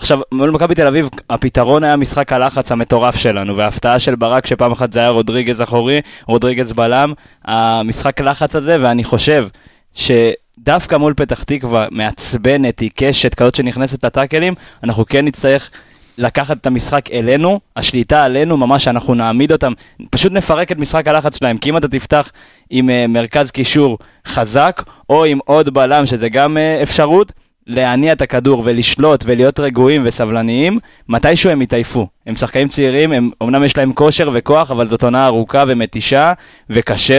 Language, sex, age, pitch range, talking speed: Hebrew, male, 20-39, 120-150 Hz, 155 wpm